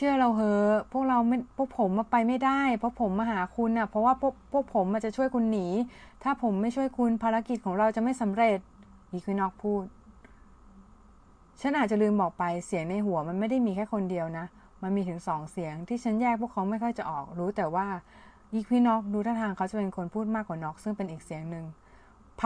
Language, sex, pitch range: Thai, female, 185-235 Hz